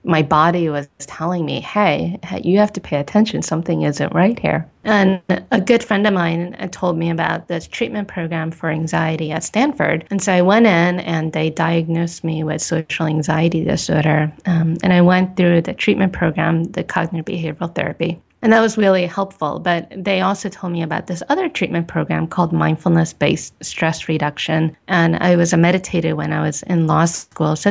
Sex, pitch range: female, 160-190 Hz